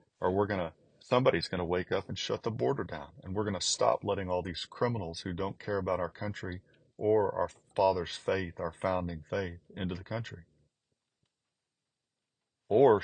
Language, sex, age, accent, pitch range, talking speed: English, male, 40-59, American, 85-95 Hz, 185 wpm